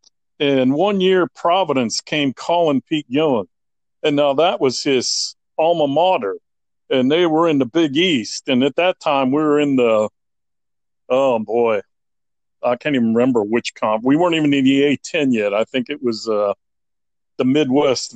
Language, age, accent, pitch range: English, 50-69, American, 125-165 Hz